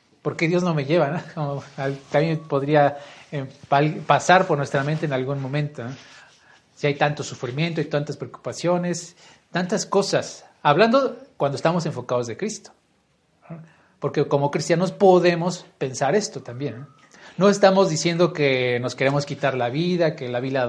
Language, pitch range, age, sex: Spanish, 140-180 Hz, 40-59, male